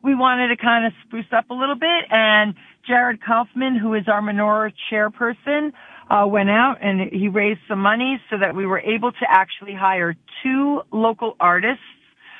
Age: 50-69